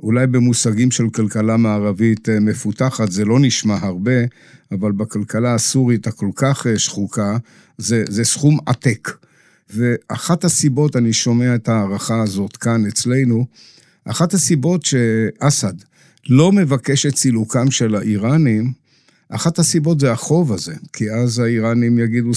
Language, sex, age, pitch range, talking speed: Hebrew, male, 60-79, 115-150 Hz, 125 wpm